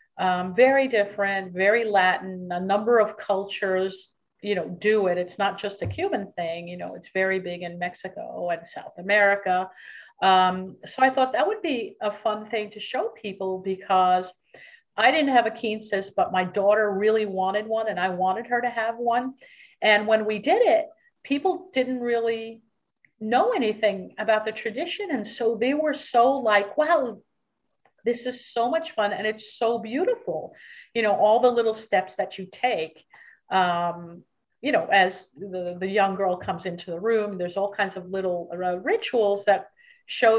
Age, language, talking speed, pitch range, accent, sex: 50-69, English, 180 wpm, 190-240 Hz, American, female